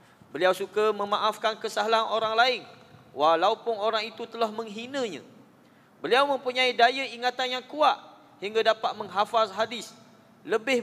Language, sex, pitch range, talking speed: Malay, male, 215-250 Hz, 120 wpm